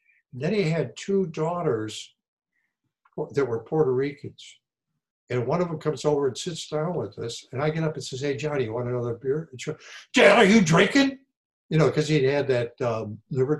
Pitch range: 120-155 Hz